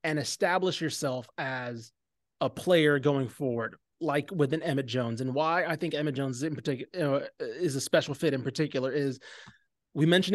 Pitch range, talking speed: 140-175 Hz, 170 wpm